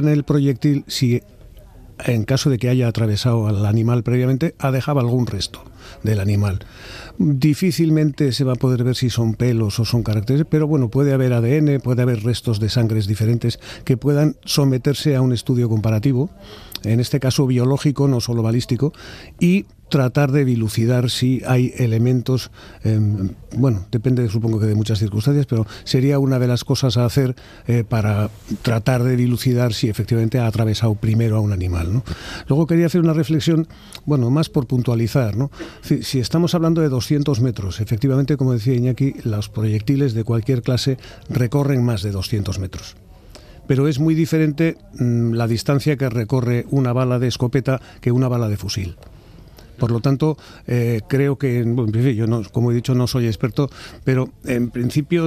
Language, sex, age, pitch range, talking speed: Spanish, male, 50-69, 110-140 Hz, 175 wpm